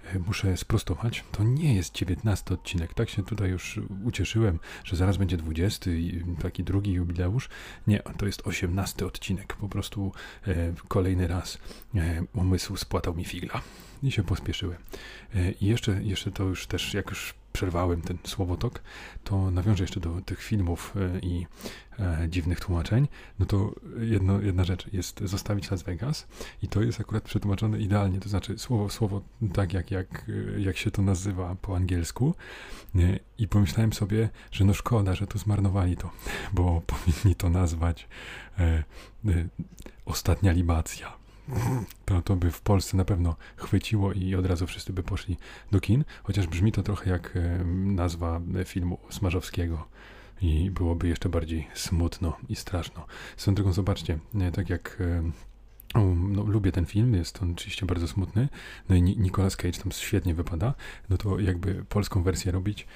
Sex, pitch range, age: male, 90-105 Hz, 30-49